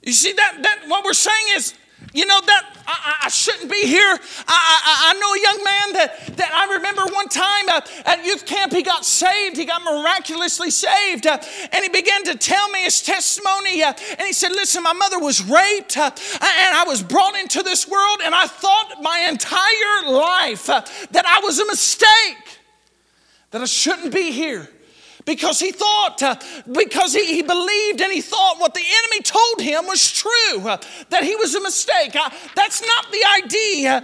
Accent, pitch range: American, 325-405 Hz